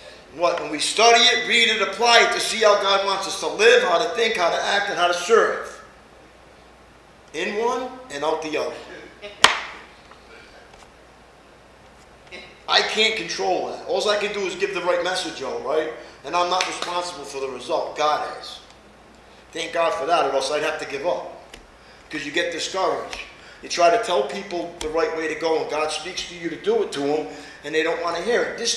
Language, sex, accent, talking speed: English, male, American, 210 wpm